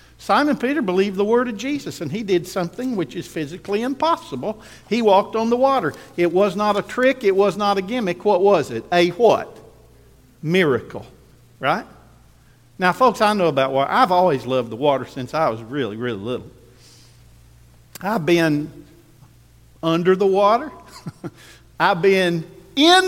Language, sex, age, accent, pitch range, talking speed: English, male, 50-69, American, 130-200 Hz, 160 wpm